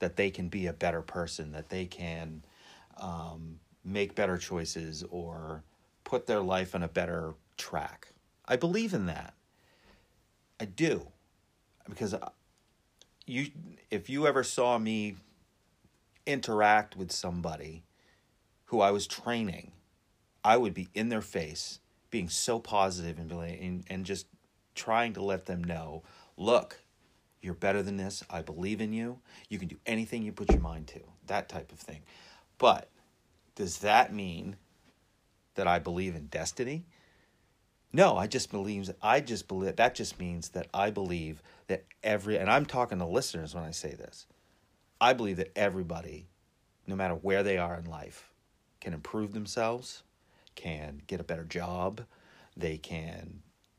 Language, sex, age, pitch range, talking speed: English, male, 30-49, 85-105 Hz, 150 wpm